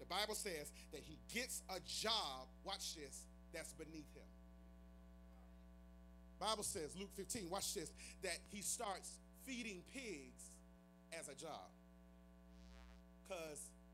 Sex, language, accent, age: male, English, American, 30-49